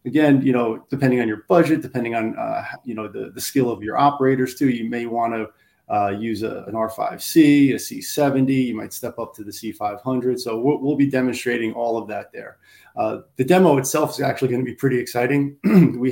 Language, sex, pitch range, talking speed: English, male, 110-125 Hz, 215 wpm